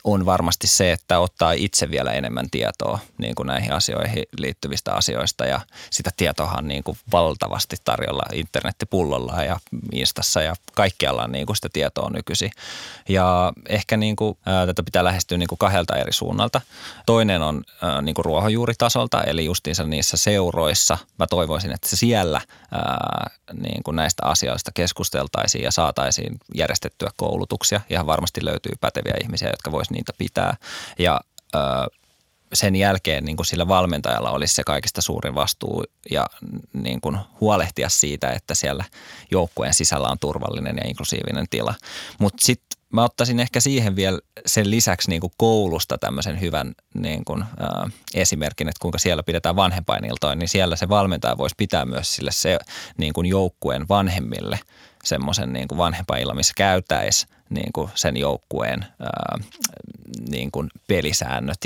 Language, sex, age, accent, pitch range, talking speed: Finnish, male, 20-39, native, 80-105 Hz, 140 wpm